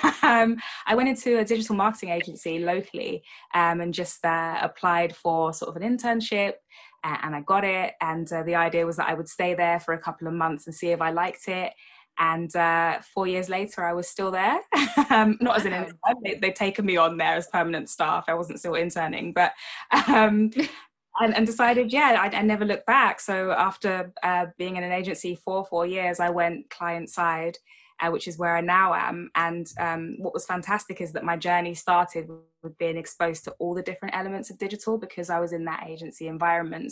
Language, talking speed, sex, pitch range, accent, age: English, 210 wpm, female, 165-190 Hz, British, 10-29